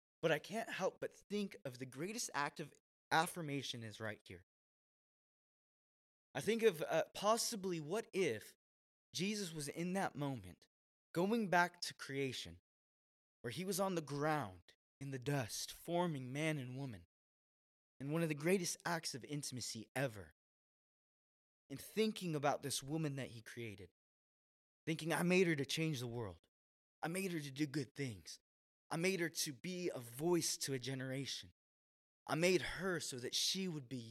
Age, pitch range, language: 20-39, 120-170 Hz, English